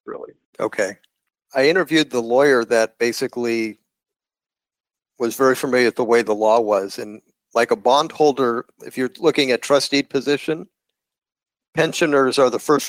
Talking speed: 145 wpm